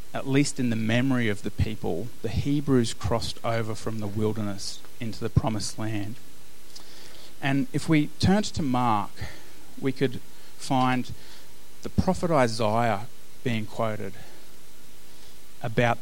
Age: 30-49